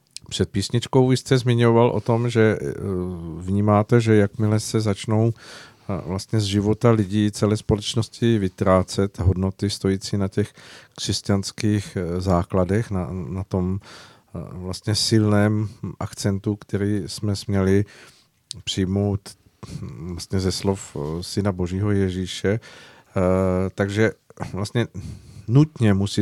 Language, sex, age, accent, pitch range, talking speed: Czech, male, 50-69, native, 95-105 Hz, 120 wpm